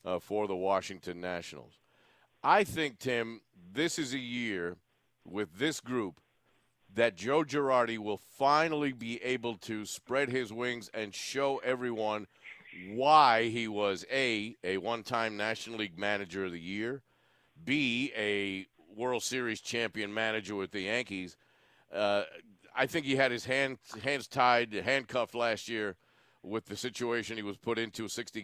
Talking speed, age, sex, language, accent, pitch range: 150 wpm, 50-69, male, English, American, 110-145 Hz